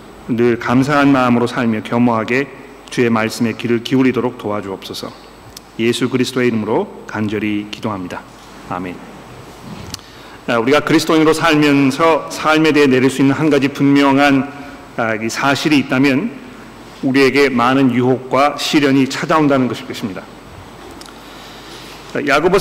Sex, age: male, 40-59